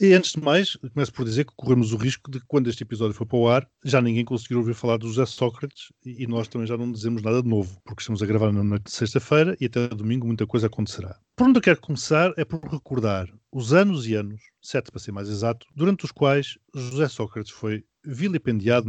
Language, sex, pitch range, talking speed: Portuguese, male, 110-140 Hz, 240 wpm